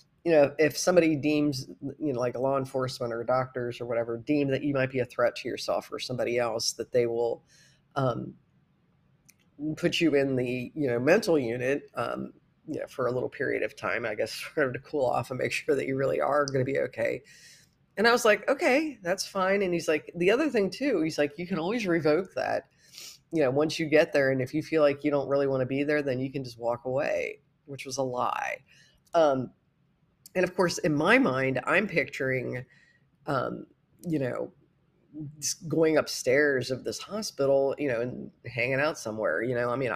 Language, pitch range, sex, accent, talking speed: English, 130-155 Hz, female, American, 215 wpm